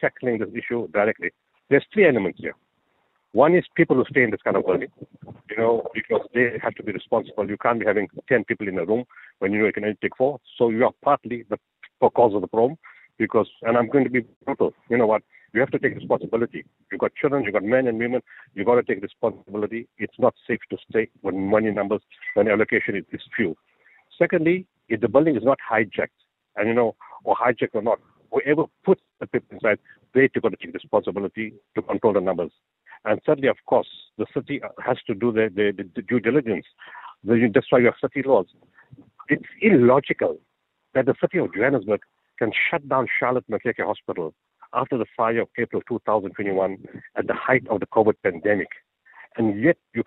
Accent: Indian